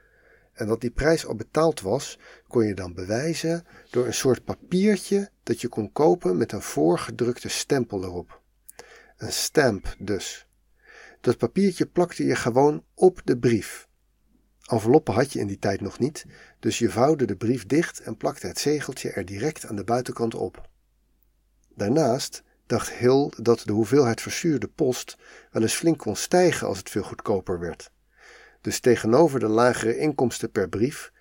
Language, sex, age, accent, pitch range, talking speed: Dutch, male, 50-69, Dutch, 110-155 Hz, 160 wpm